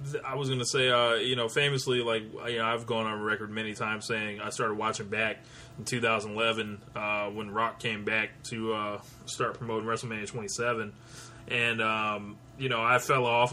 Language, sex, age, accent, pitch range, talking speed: English, male, 20-39, American, 110-125 Hz, 195 wpm